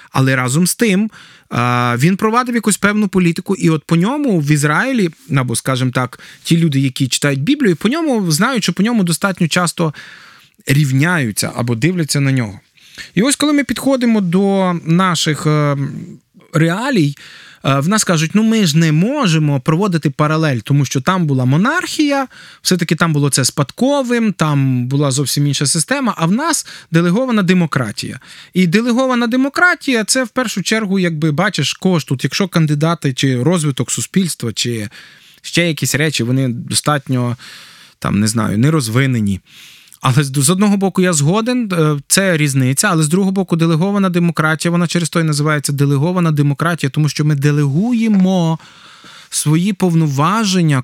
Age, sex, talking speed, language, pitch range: 20-39, male, 150 wpm, Ukrainian, 145-195 Hz